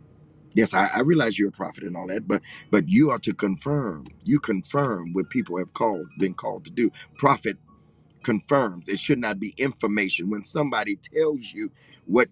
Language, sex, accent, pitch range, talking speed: English, male, American, 95-125 Hz, 185 wpm